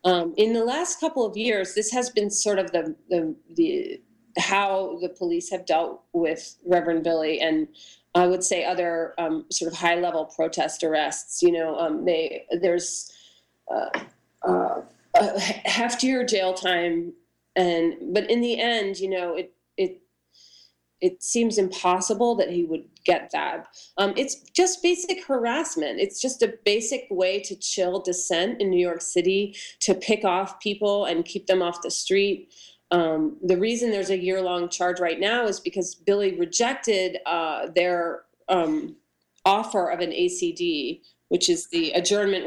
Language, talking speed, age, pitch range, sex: English, 160 wpm, 30-49, 175-235 Hz, female